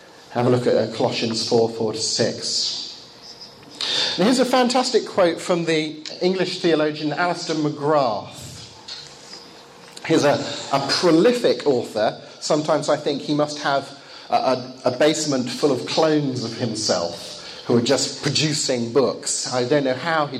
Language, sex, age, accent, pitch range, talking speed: English, male, 40-59, British, 125-180 Hz, 140 wpm